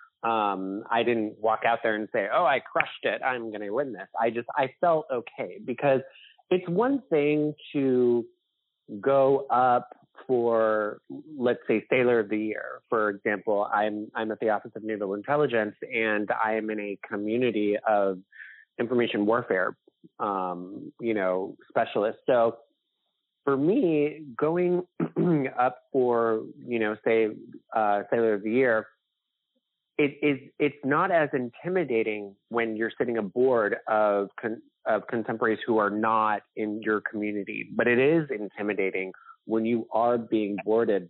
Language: English